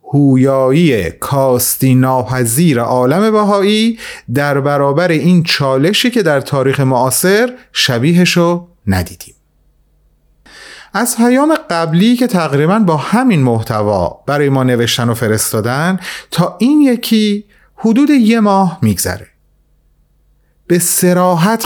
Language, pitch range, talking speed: Persian, 115-180 Hz, 105 wpm